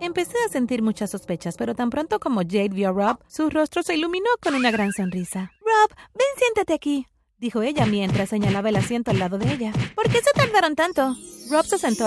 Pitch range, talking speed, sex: 205-310 Hz, 215 wpm, female